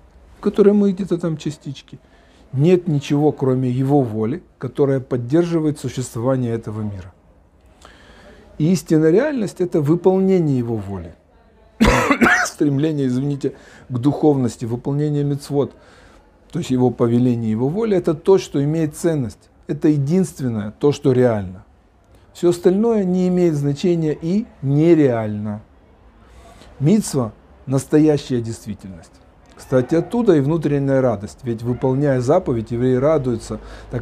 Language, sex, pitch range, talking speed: Russian, male, 105-155 Hz, 120 wpm